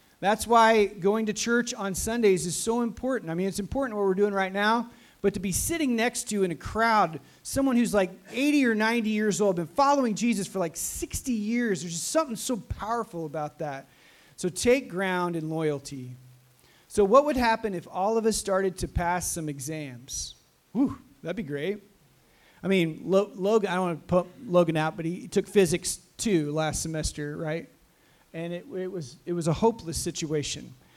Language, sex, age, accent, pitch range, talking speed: English, male, 30-49, American, 170-225 Hz, 190 wpm